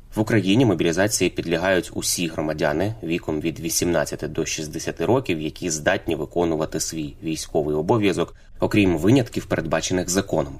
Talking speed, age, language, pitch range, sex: 125 wpm, 20-39, Ukrainian, 85-105 Hz, male